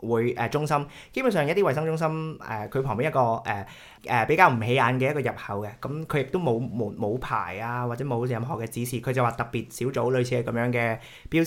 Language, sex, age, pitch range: Chinese, male, 20-39, 110-140 Hz